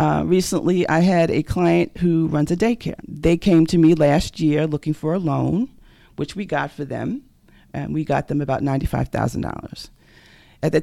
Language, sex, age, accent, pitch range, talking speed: English, female, 40-59, American, 135-185 Hz, 185 wpm